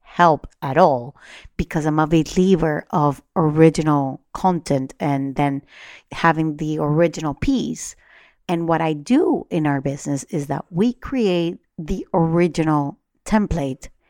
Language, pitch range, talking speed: English, 145-190 Hz, 130 wpm